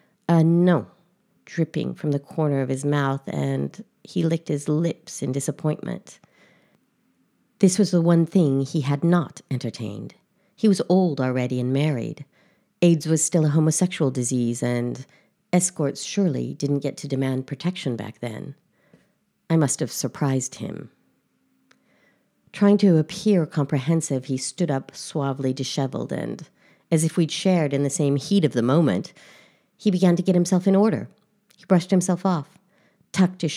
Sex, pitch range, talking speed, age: female, 135-180 Hz, 155 wpm, 50-69